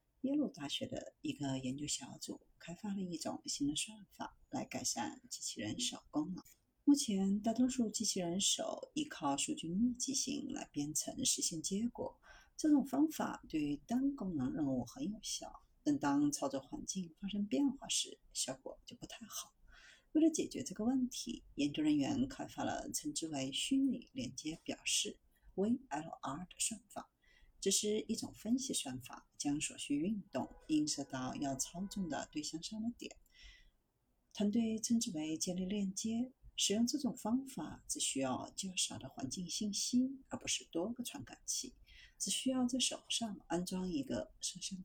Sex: female